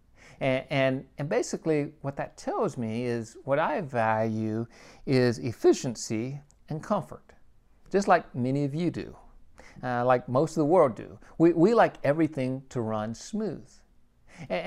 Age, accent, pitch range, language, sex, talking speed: 50-69, American, 115-155 Hz, English, male, 150 wpm